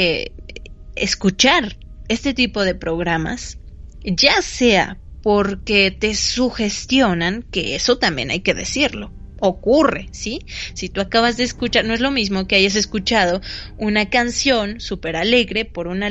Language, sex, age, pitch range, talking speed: Dutch, female, 20-39, 185-240 Hz, 135 wpm